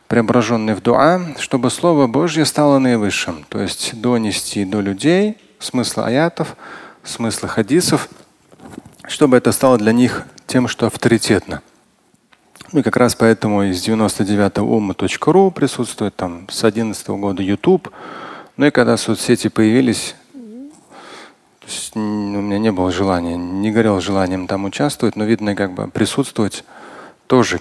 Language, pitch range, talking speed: Russian, 100-125 Hz, 135 wpm